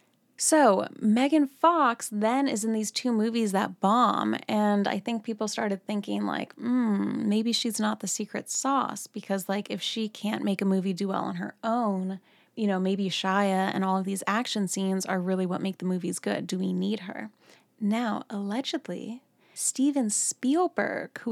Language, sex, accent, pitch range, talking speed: English, female, American, 190-230 Hz, 180 wpm